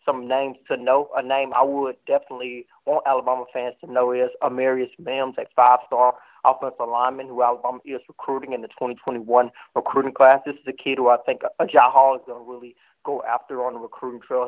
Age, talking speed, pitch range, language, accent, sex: 30-49, 205 wpm, 125-135 Hz, English, American, male